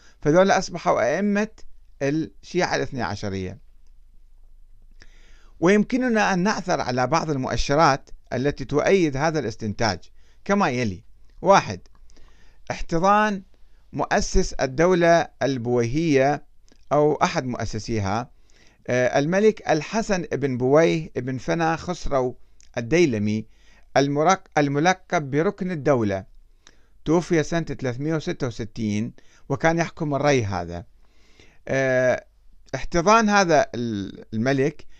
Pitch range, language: 115-170 Hz, Arabic